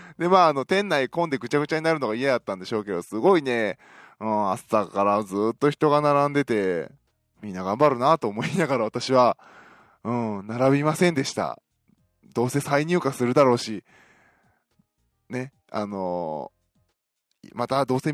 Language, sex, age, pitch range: Japanese, male, 20-39, 115-160 Hz